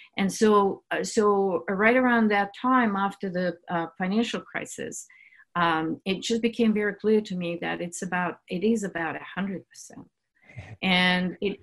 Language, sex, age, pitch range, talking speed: English, female, 50-69, 170-215 Hz, 160 wpm